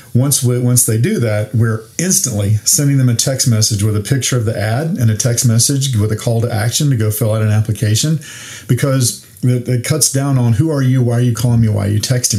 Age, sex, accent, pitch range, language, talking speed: 40-59, male, American, 110-130 Hz, English, 245 wpm